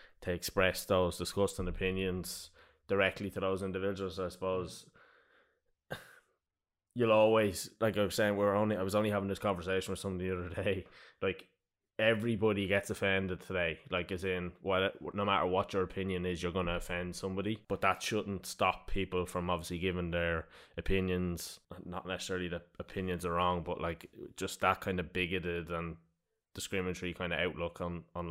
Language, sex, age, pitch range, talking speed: English, male, 20-39, 85-100 Hz, 170 wpm